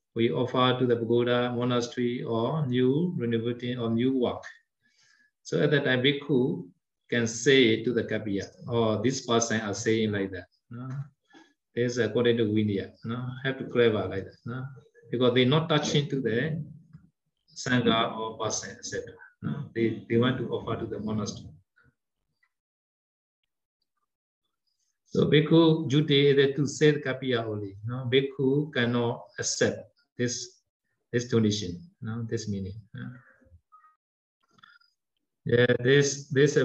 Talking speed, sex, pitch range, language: 145 wpm, male, 115-145 Hz, Vietnamese